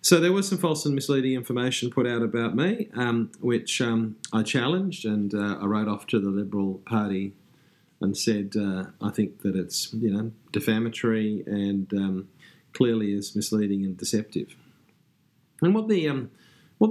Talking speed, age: 170 wpm, 40-59